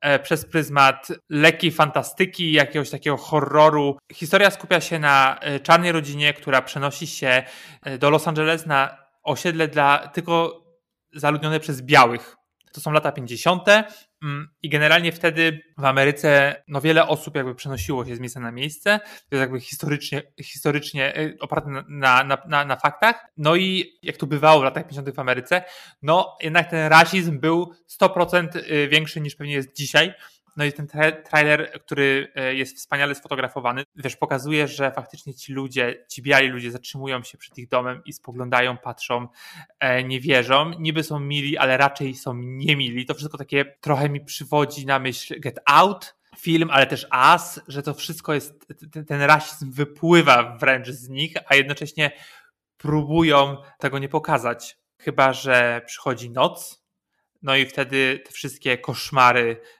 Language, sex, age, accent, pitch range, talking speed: Polish, male, 20-39, native, 135-160 Hz, 150 wpm